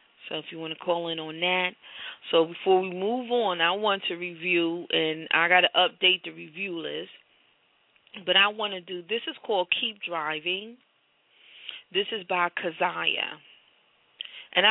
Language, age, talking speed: English, 30-49, 160 wpm